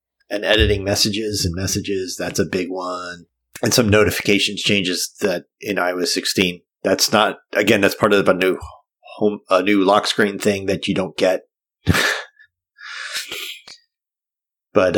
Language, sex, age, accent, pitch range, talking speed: English, male, 30-49, American, 95-125 Hz, 145 wpm